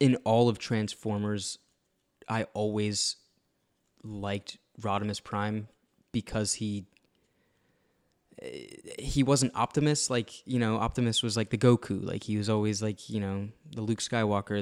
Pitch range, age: 100-115 Hz, 20-39